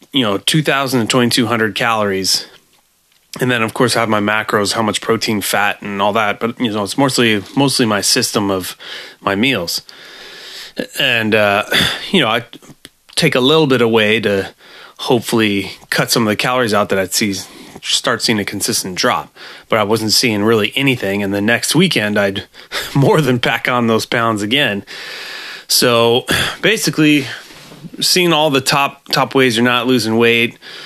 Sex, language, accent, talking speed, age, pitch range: male, English, American, 165 wpm, 30-49, 105-125 Hz